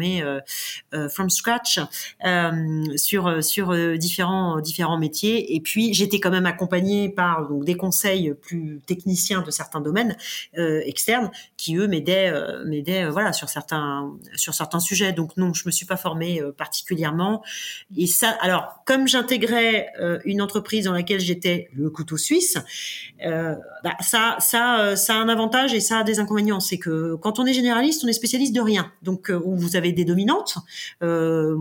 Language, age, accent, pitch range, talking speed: French, 30-49, French, 165-210 Hz, 175 wpm